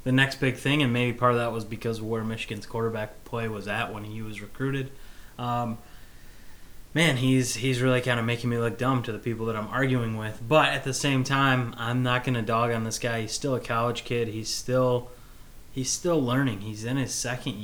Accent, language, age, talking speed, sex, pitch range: American, English, 20-39, 230 wpm, male, 115-130 Hz